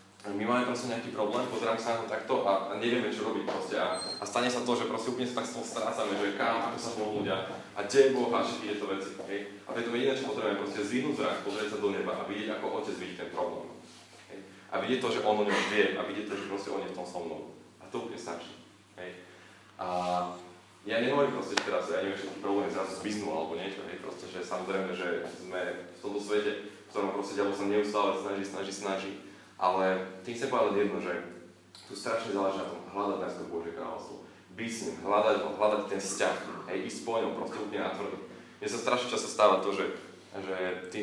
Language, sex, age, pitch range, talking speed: Slovak, male, 20-39, 95-115 Hz, 230 wpm